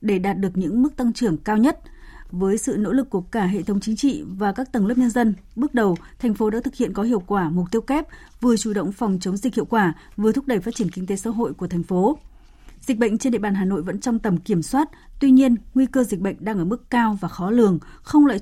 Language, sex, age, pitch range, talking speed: Vietnamese, female, 20-39, 195-245 Hz, 275 wpm